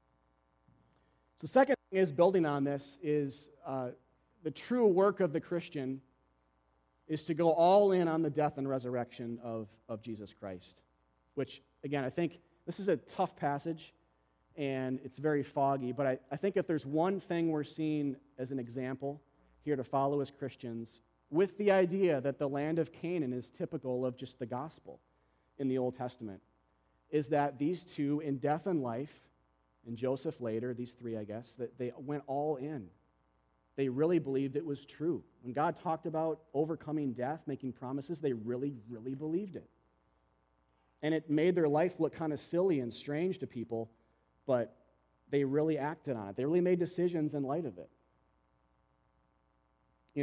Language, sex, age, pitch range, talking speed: English, male, 30-49, 115-155 Hz, 170 wpm